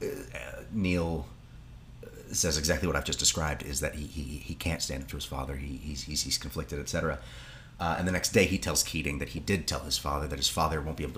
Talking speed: 240 wpm